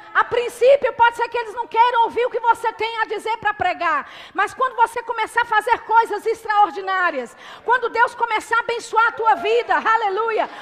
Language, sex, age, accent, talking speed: Portuguese, female, 40-59, Brazilian, 190 wpm